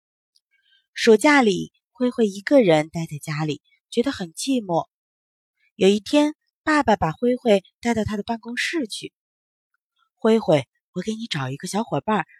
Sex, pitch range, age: female, 175-270 Hz, 20-39